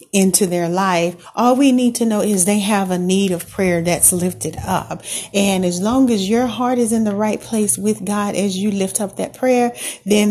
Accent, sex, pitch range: American, female, 185-210 Hz